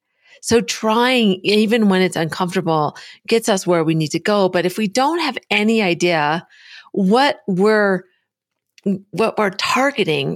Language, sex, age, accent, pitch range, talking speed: English, female, 40-59, American, 175-255 Hz, 145 wpm